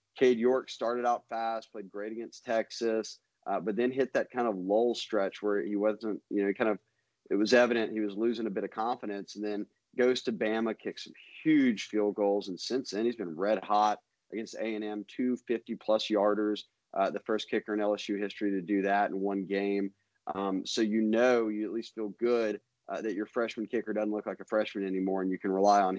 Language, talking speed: English, 215 wpm